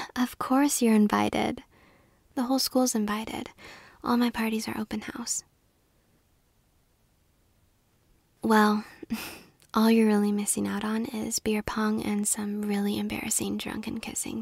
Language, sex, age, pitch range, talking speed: English, female, 10-29, 205-235 Hz, 125 wpm